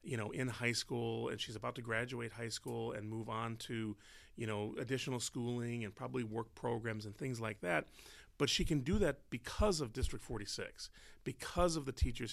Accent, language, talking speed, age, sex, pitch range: American, English, 205 wpm, 30-49, male, 115-155 Hz